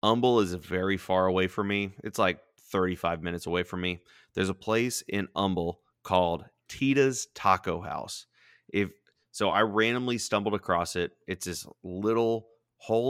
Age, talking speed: 30-49, 155 wpm